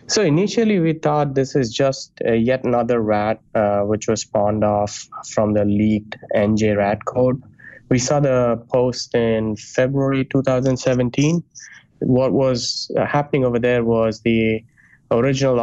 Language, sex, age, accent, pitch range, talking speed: English, male, 20-39, Indian, 110-130 Hz, 140 wpm